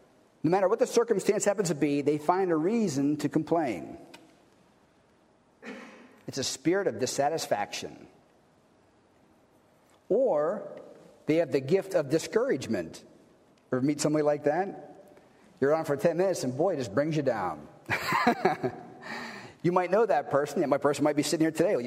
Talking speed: 150 wpm